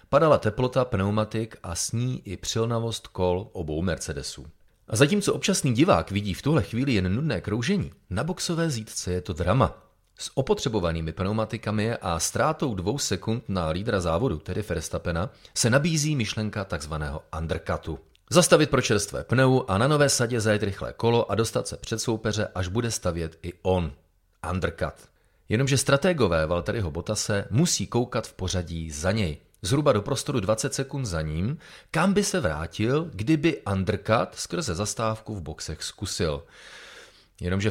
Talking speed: 155 wpm